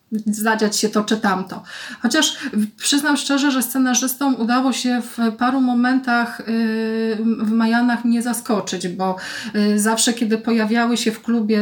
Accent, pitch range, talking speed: native, 215-250 Hz, 135 wpm